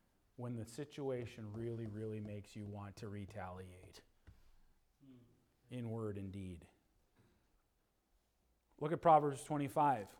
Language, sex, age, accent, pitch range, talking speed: English, male, 40-59, American, 125-160 Hz, 105 wpm